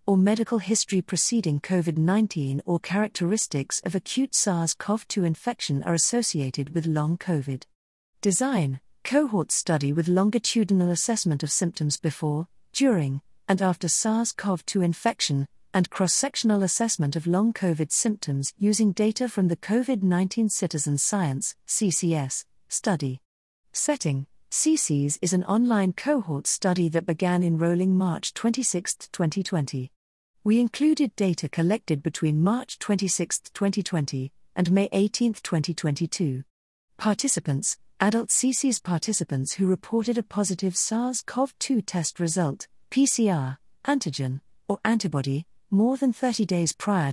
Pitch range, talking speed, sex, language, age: 155-215 Hz, 115 wpm, female, English, 50-69